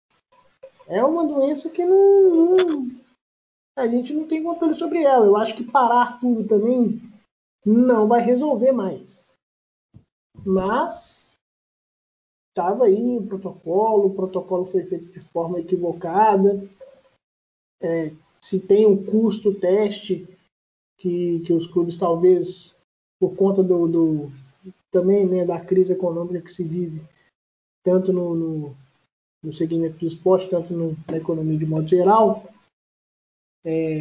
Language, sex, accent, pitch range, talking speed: Portuguese, male, Brazilian, 180-235 Hz, 130 wpm